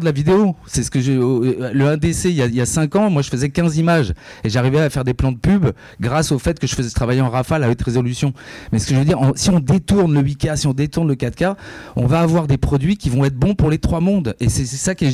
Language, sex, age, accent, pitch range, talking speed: French, male, 30-49, French, 120-160 Hz, 295 wpm